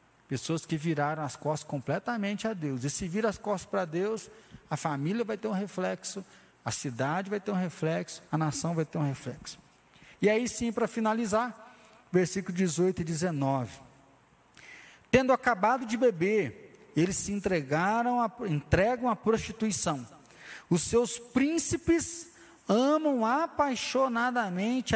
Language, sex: Portuguese, male